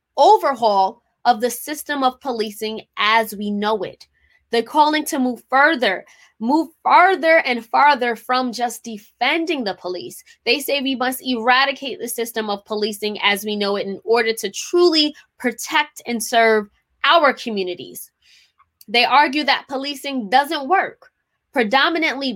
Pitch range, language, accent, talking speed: 215-275 Hz, English, American, 140 wpm